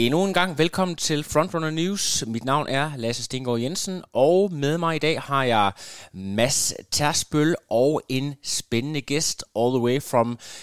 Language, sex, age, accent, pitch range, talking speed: Danish, male, 20-39, native, 120-155 Hz, 170 wpm